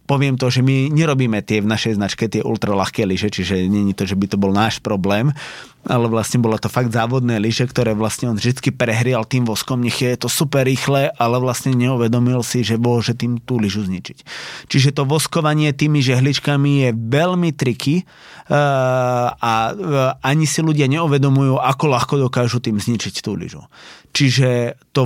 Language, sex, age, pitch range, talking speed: Slovak, male, 30-49, 110-135 Hz, 175 wpm